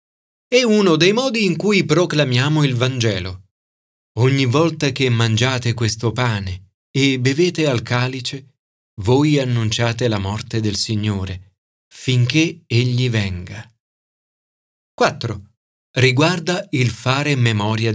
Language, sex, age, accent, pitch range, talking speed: Italian, male, 40-59, native, 110-165 Hz, 110 wpm